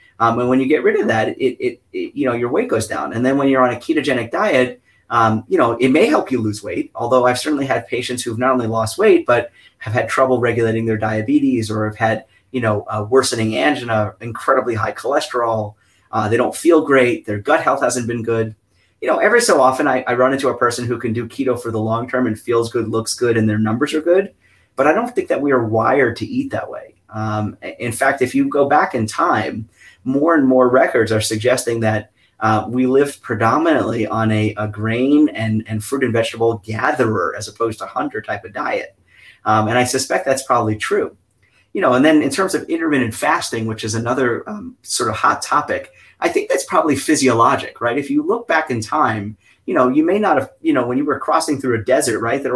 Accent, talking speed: American, 235 wpm